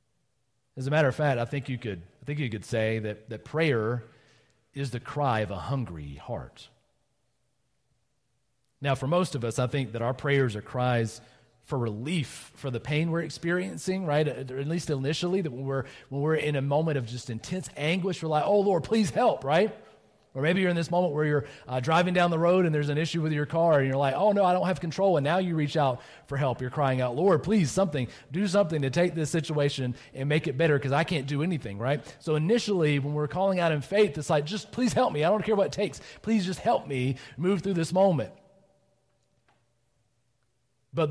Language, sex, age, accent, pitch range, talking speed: English, male, 40-59, American, 125-165 Hz, 225 wpm